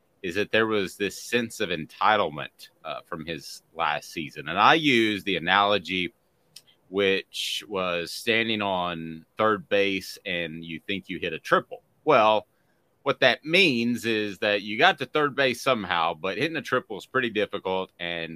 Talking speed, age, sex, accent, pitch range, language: 165 wpm, 30-49, male, American, 85-105 Hz, English